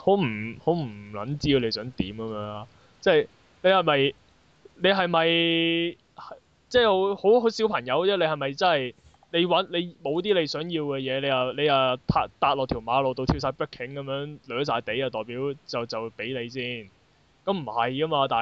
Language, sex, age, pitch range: Chinese, male, 20-39, 115-160 Hz